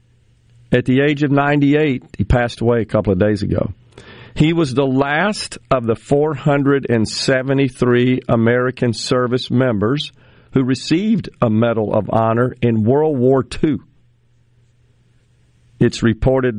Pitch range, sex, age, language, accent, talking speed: 115-130 Hz, male, 50-69, English, American, 125 wpm